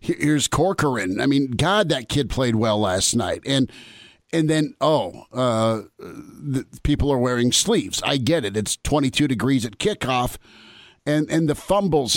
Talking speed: 165 wpm